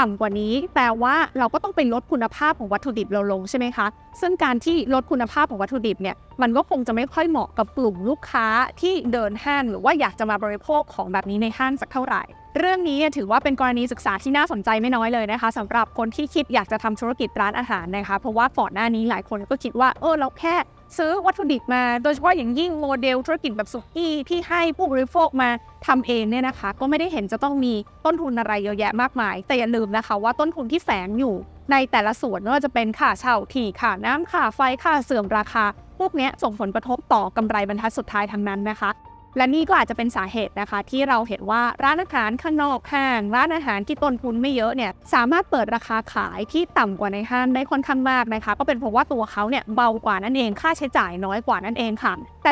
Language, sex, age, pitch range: Thai, female, 20-39, 225-290 Hz